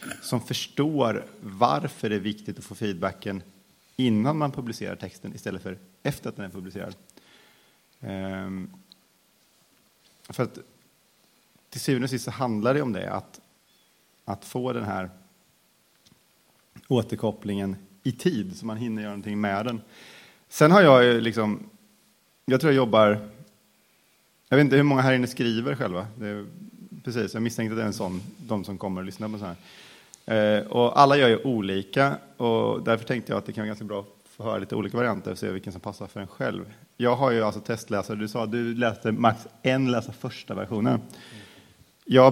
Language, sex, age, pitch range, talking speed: Swedish, male, 30-49, 100-125 Hz, 175 wpm